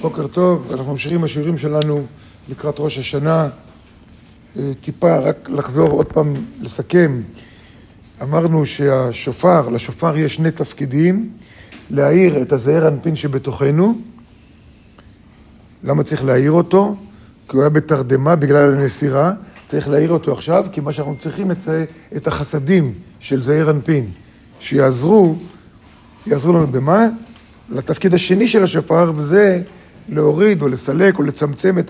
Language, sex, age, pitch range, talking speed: Hebrew, male, 50-69, 140-175 Hz, 120 wpm